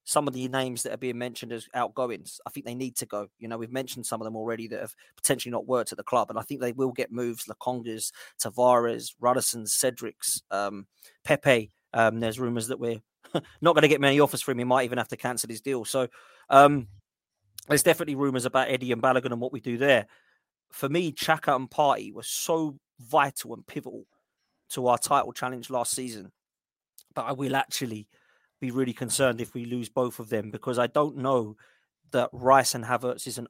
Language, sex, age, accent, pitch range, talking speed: English, male, 30-49, British, 115-135 Hz, 210 wpm